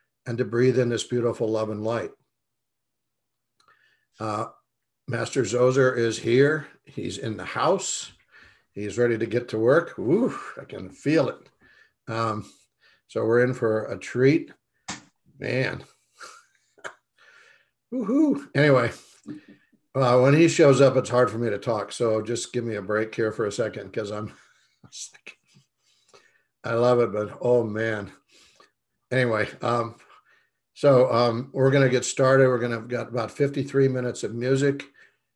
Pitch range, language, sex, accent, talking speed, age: 115-130 Hz, English, male, American, 150 wpm, 60-79